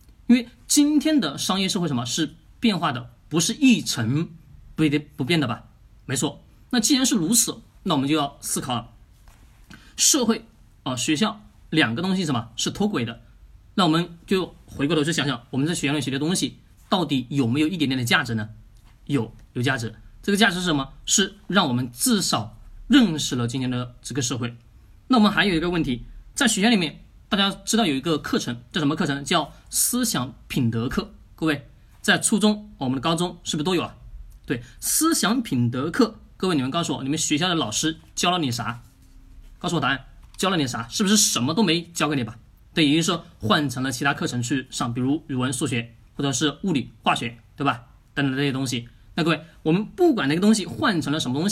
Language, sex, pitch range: Chinese, male, 125-190 Hz